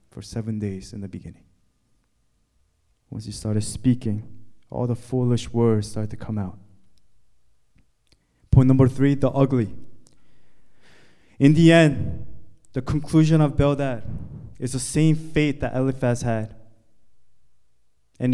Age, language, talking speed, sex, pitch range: 20-39, English, 125 wpm, male, 120-165 Hz